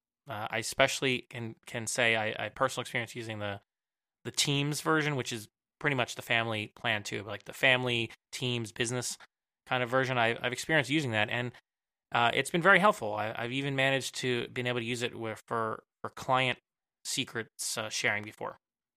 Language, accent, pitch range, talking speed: English, American, 105-125 Hz, 195 wpm